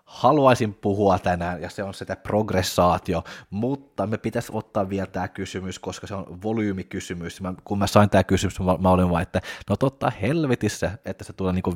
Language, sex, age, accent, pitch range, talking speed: Finnish, male, 20-39, native, 95-110 Hz, 185 wpm